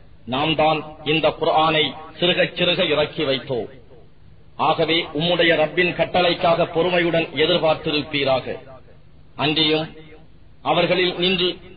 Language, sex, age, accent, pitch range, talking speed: English, male, 40-59, Indian, 155-180 Hz, 85 wpm